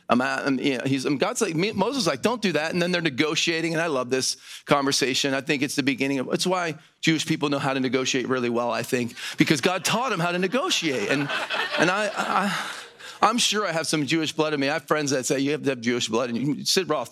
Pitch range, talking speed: 140-195 Hz, 265 wpm